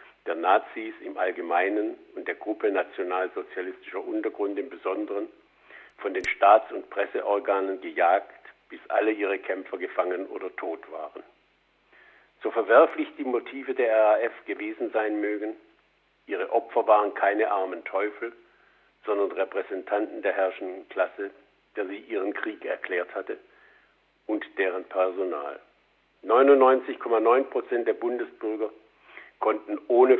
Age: 50-69